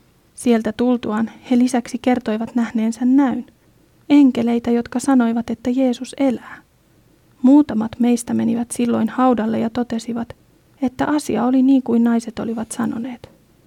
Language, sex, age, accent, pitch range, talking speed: Finnish, female, 30-49, native, 230-260 Hz, 125 wpm